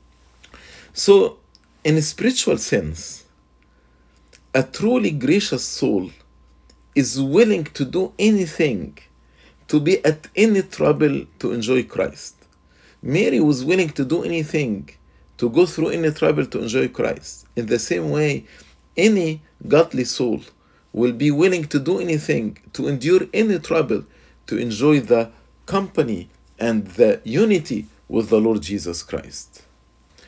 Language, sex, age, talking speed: English, male, 50-69, 130 wpm